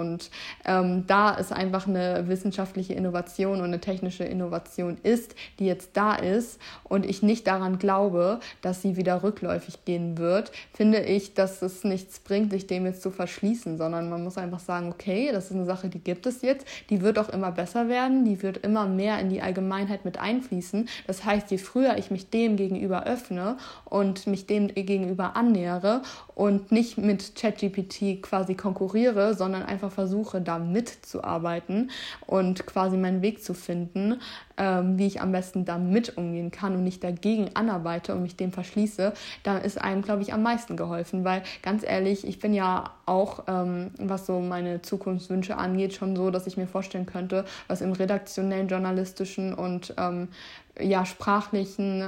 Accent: German